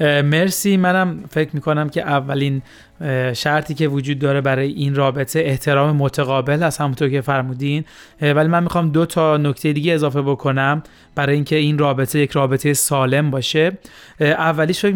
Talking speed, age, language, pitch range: 150 wpm, 30-49, Persian, 140-155 Hz